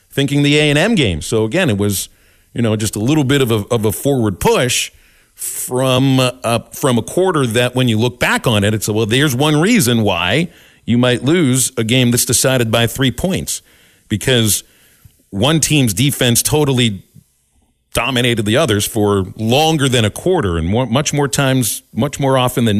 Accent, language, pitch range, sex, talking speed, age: American, English, 105-135 Hz, male, 185 wpm, 40-59